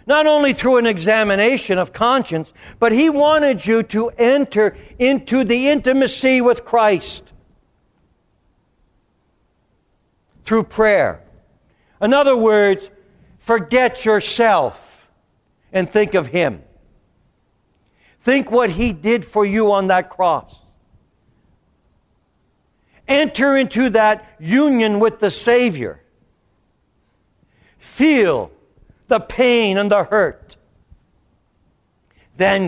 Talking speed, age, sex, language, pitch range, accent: 95 wpm, 60-79, male, English, 170-235 Hz, American